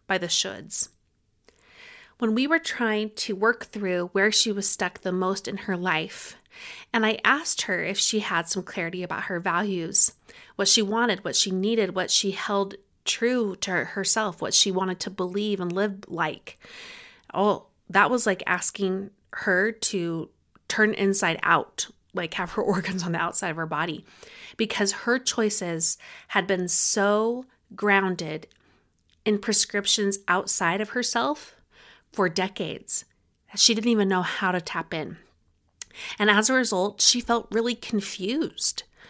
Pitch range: 180-220 Hz